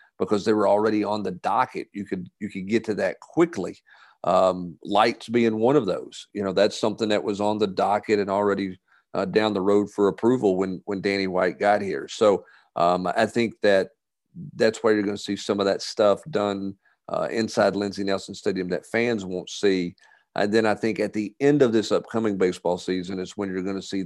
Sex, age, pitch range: male, 50-69, 95-105 Hz